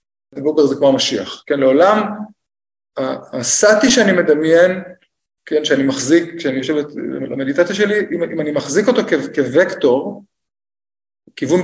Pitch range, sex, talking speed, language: 135-185 Hz, male, 115 wpm, Hebrew